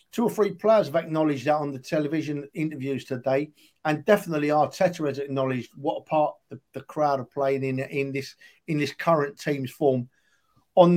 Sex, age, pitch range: male, 50-69, 140-175 Hz